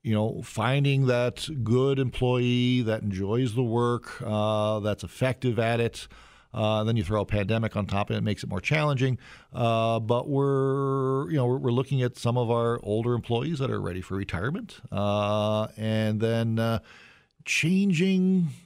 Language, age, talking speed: English, 40-59, 170 wpm